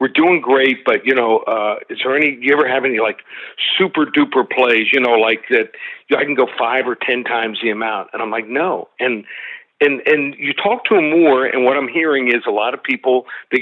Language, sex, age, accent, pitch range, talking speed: English, male, 50-69, American, 130-180 Hz, 235 wpm